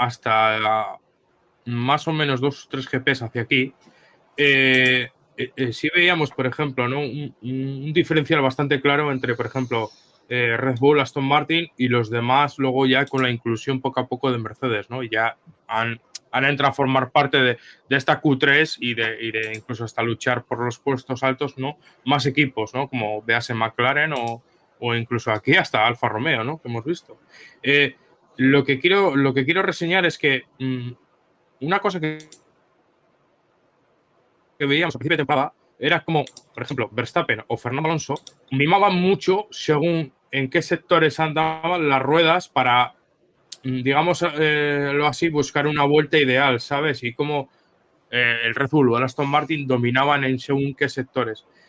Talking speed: 170 wpm